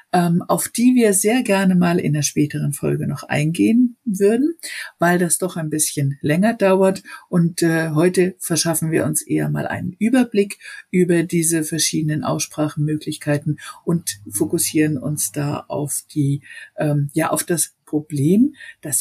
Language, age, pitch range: German, 60-79, 155-195 Hz